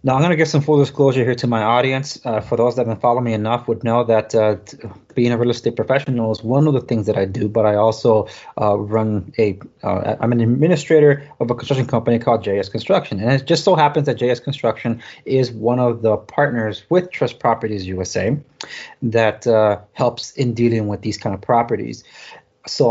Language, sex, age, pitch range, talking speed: English, male, 30-49, 110-135 Hz, 215 wpm